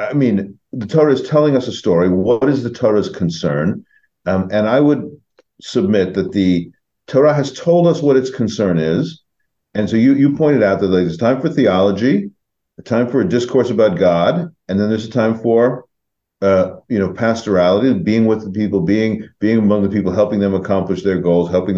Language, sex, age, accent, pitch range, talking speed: English, male, 50-69, American, 100-145 Hz, 200 wpm